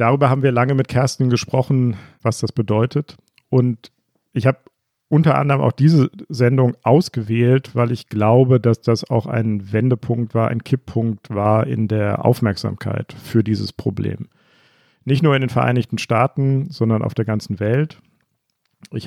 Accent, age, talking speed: German, 50-69, 155 wpm